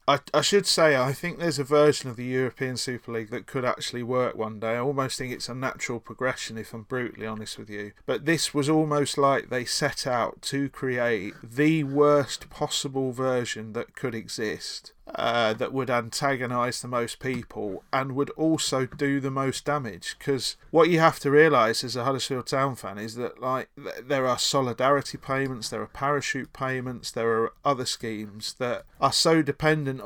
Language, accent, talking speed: English, British, 190 wpm